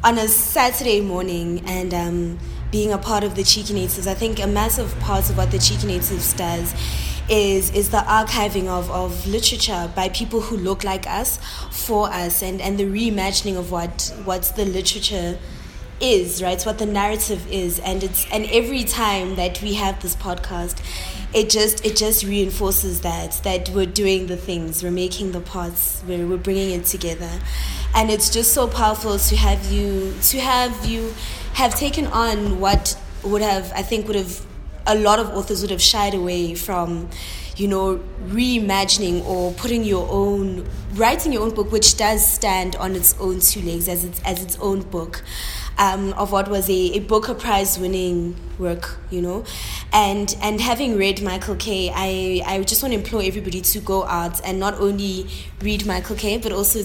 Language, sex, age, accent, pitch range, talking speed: English, female, 20-39, South African, 180-210 Hz, 185 wpm